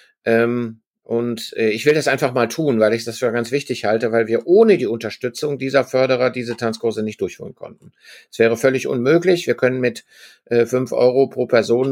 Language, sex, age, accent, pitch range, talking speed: German, male, 50-69, German, 115-135 Hz, 185 wpm